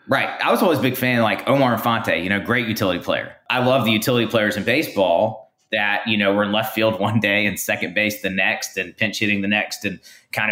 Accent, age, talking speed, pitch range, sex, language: American, 30-49, 250 wpm, 100-115 Hz, male, English